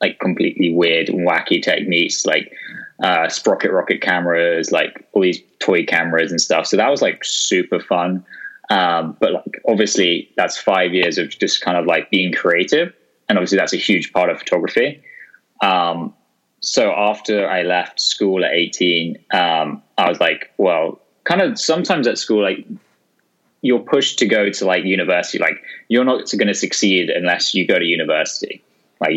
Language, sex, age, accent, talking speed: English, male, 10-29, British, 175 wpm